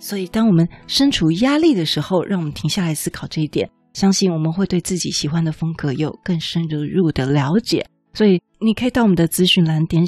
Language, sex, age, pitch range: Chinese, female, 30-49, 155-200 Hz